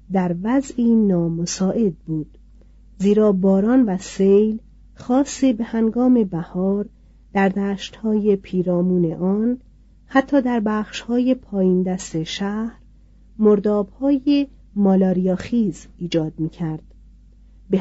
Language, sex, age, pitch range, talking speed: Persian, female, 40-59, 180-235 Hz, 90 wpm